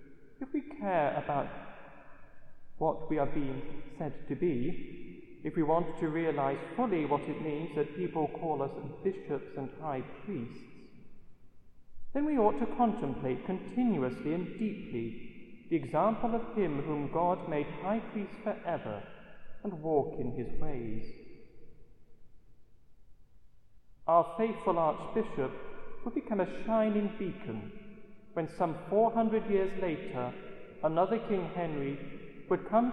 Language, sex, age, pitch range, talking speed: English, male, 40-59, 145-210 Hz, 125 wpm